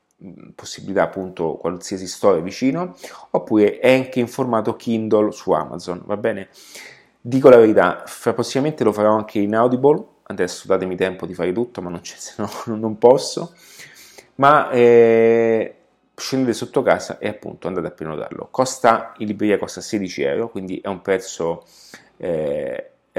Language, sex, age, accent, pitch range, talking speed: Italian, male, 30-49, native, 95-120 Hz, 150 wpm